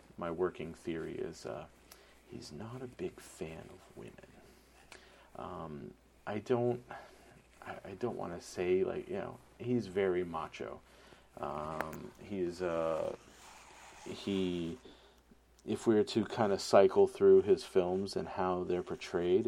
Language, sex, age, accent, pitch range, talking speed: English, male, 40-59, American, 85-120 Hz, 140 wpm